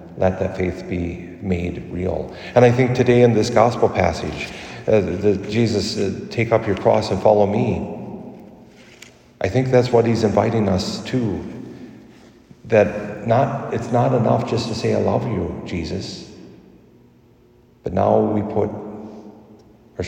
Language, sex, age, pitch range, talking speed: English, male, 50-69, 90-110 Hz, 145 wpm